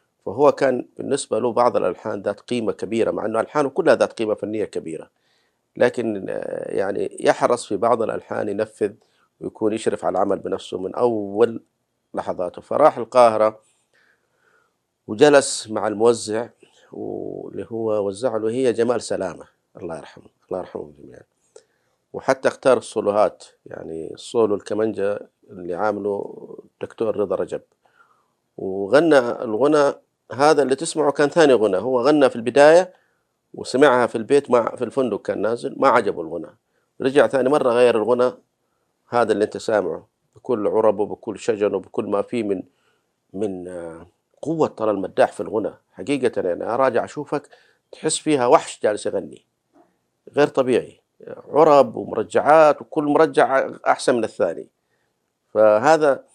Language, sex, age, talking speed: Arabic, male, 50-69, 135 wpm